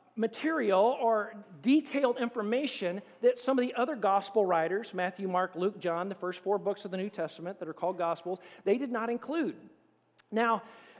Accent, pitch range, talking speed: American, 195-265 Hz, 175 wpm